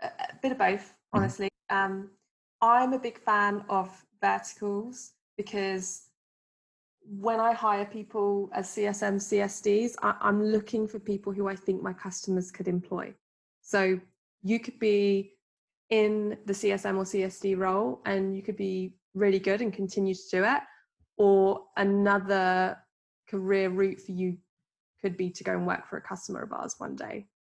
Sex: female